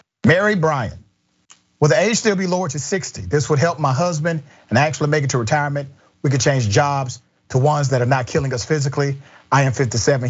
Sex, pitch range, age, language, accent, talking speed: male, 125-155 Hz, 40-59, English, American, 215 wpm